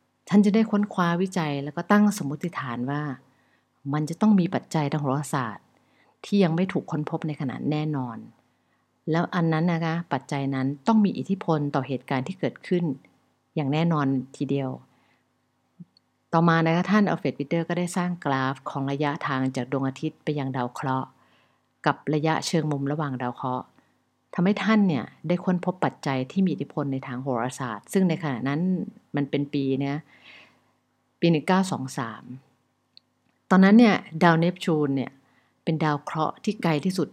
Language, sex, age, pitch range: English, female, 50-69, 135-170 Hz